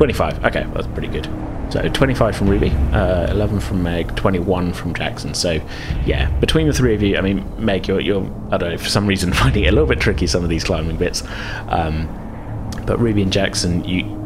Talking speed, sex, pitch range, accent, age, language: 225 wpm, male, 80-105 Hz, British, 30-49, English